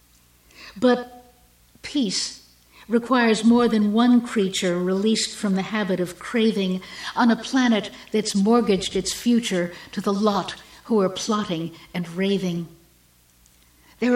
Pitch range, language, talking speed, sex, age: 170-225 Hz, English, 125 wpm, female, 60-79